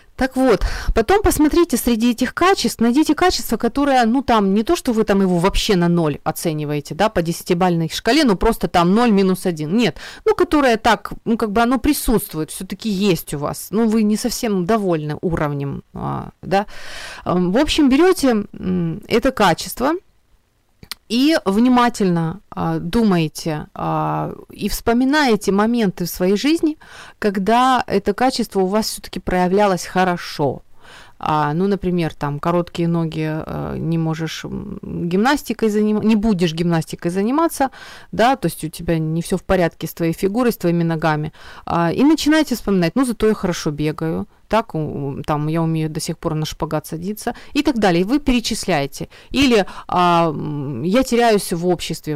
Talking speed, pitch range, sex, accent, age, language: 155 wpm, 170-235 Hz, female, native, 30-49, Ukrainian